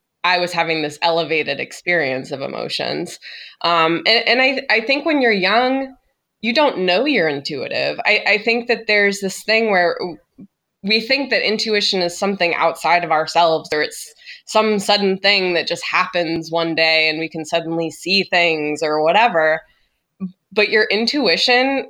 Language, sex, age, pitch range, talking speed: English, female, 20-39, 160-210 Hz, 165 wpm